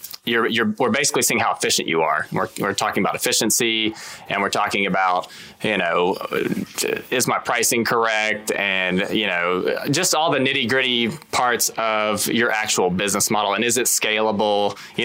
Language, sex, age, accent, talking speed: English, male, 20-39, American, 170 wpm